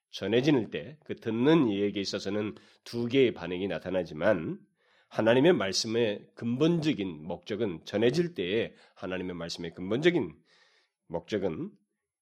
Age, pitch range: 30-49, 100-130 Hz